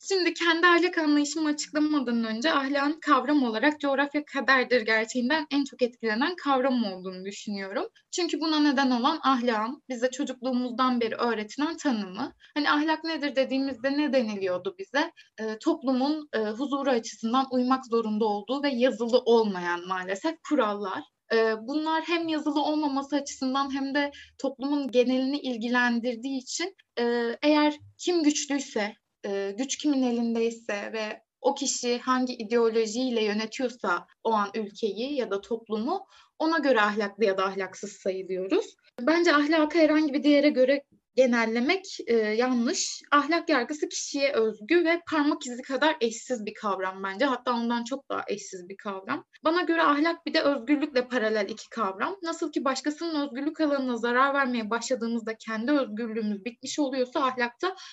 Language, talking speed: Turkish, 140 wpm